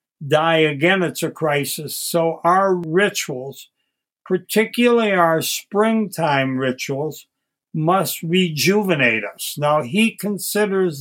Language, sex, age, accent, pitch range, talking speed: English, male, 60-79, American, 150-185 Hz, 100 wpm